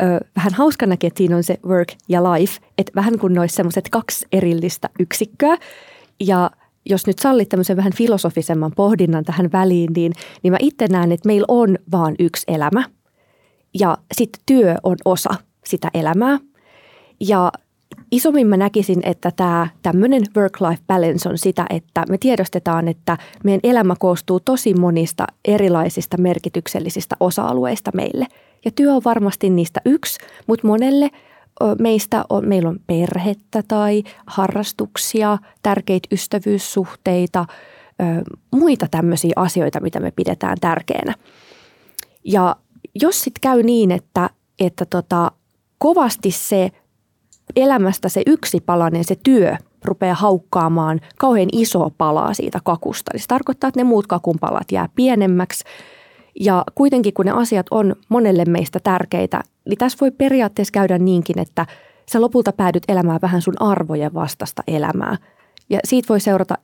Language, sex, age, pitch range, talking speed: Finnish, female, 20-39, 175-220 Hz, 135 wpm